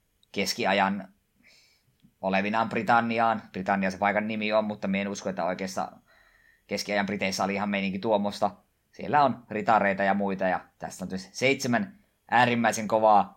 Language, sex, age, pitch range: Finnish, male, 20-39, 95-115 Hz